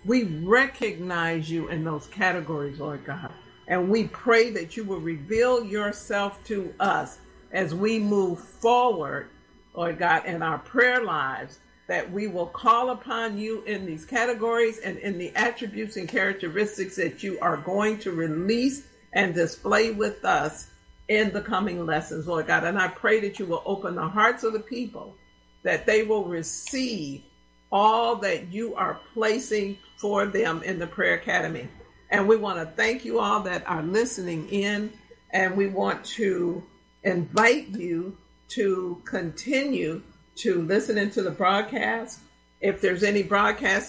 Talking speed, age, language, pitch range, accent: 155 wpm, 50-69, English, 175-220 Hz, American